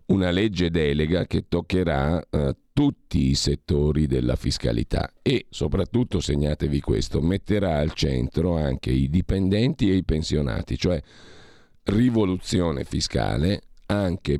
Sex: male